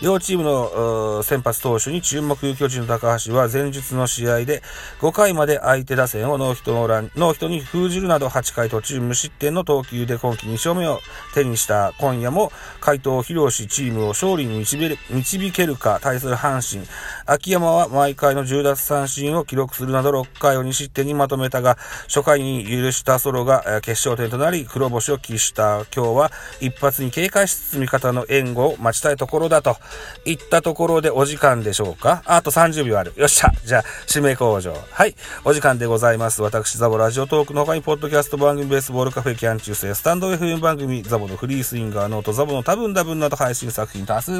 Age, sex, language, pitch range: 40-59, male, Japanese, 115-150 Hz